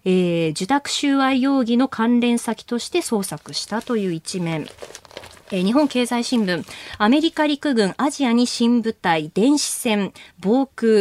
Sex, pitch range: female, 190-280 Hz